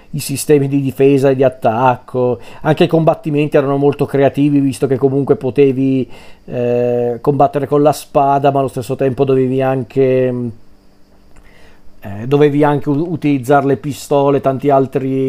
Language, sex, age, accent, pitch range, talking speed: Italian, male, 40-59, native, 125-145 Hz, 145 wpm